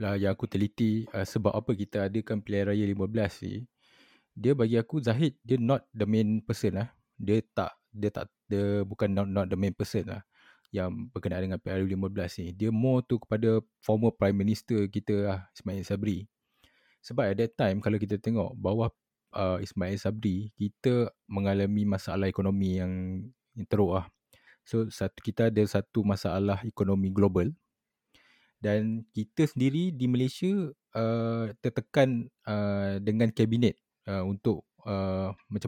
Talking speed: 150 wpm